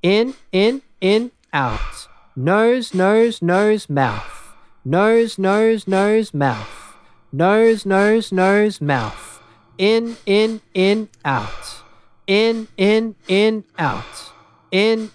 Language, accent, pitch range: English, Australian, 145-210 Hz